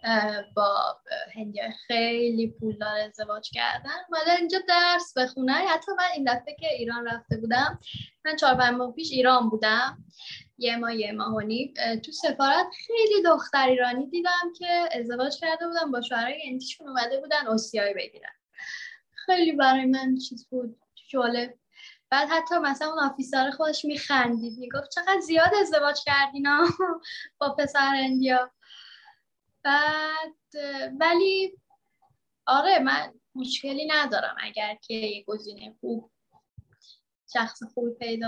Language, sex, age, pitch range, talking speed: Persian, female, 10-29, 230-310 Hz, 125 wpm